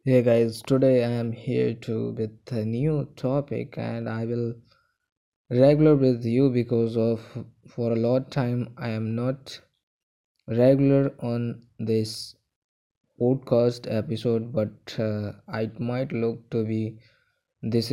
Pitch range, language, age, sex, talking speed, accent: 110-125 Hz, English, 20-39, male, 135 wpm, Indian